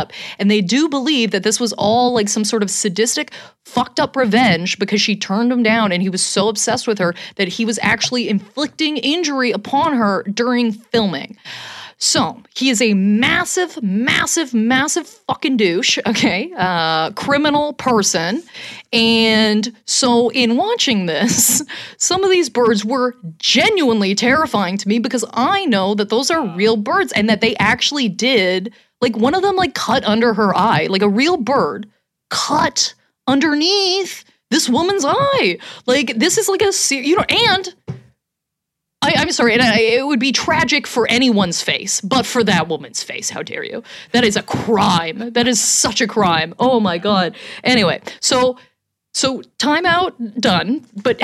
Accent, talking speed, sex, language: American, 165 wpm, female, English